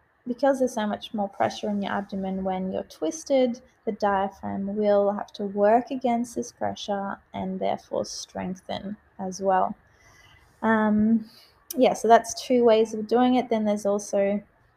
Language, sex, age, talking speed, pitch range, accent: English, female, 20-39, 155 wpm, 190-225 Hz, Australian